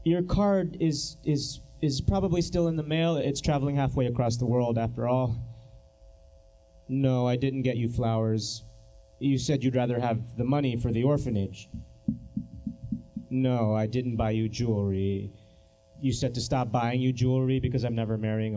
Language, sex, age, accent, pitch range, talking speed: English, male, 30-49, American, 110-150 Hz, 165 wpm